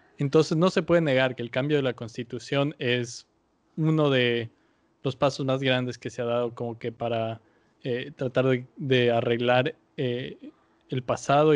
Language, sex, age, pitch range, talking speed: Spanish, male, 20-39, 120-140 Hz, 170 wpm